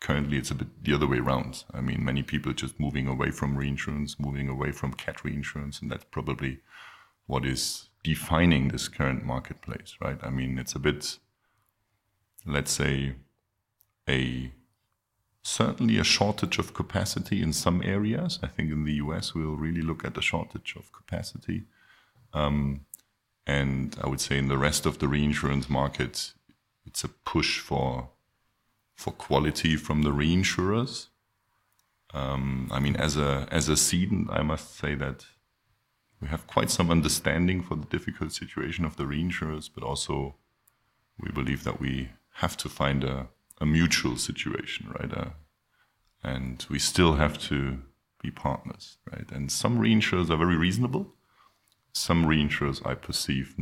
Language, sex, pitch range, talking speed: English, male, 70-90 Hz, 155 wpm